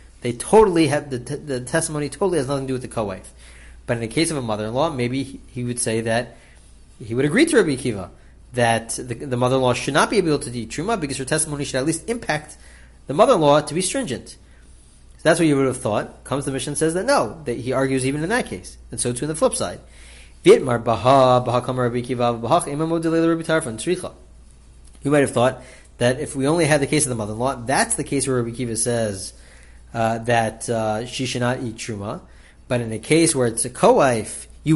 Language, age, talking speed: English, 30-49, 225 wpm